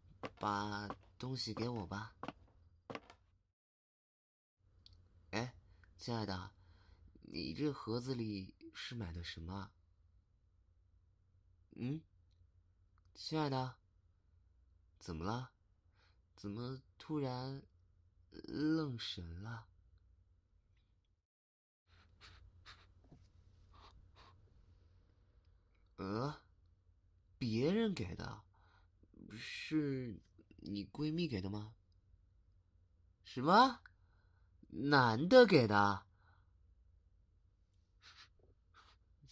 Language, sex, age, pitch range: Chinese, male, 30-49, 90-110 Hz